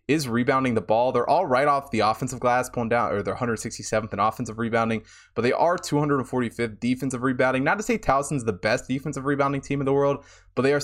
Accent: American